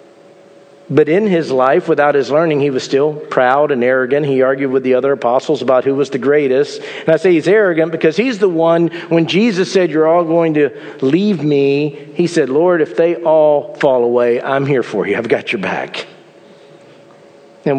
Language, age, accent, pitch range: English, 50-69, American, 140-180 Hz